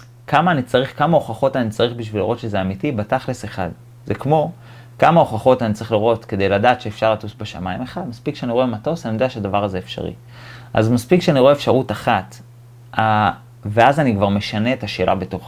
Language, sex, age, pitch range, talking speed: Hebrew, male, 30-49, 105-130 Hz, 185 wpm